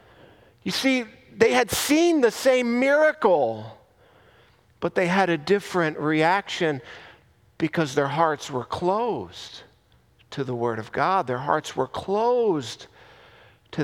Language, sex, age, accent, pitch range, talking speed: English, male, 50-69, American, 120-190 Hz, 125 wpm